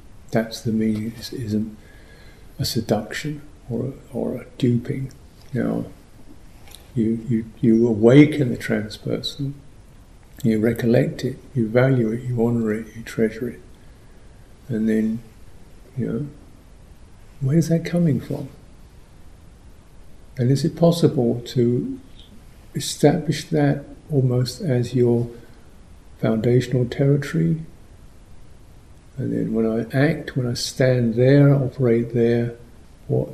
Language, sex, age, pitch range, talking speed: English, male, 60-79, 105-130 Hz, 110 wpm